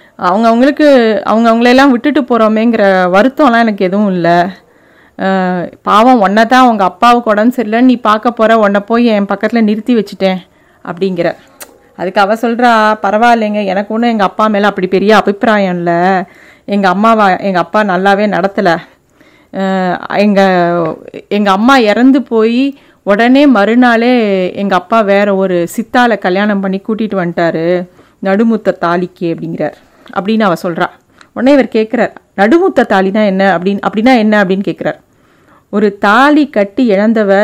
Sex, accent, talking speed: female, native, 125 wpm